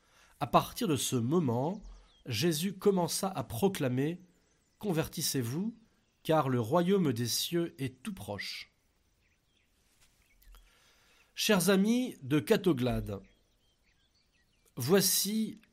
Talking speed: 90 wpm